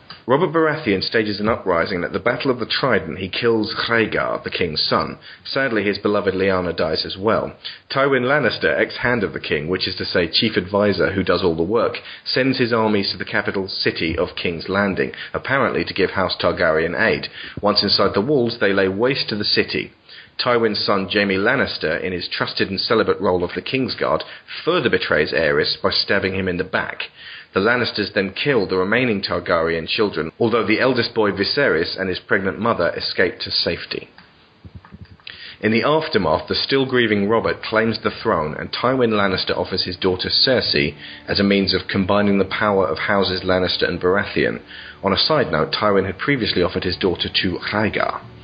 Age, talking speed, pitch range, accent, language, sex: 30-49, 185 wpm, 95-110 Hz, British, English, male